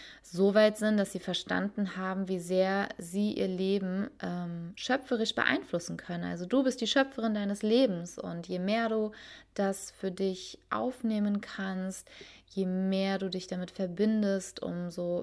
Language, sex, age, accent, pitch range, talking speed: German, female, 20-39, German, 180-210 Hz, 155 wpm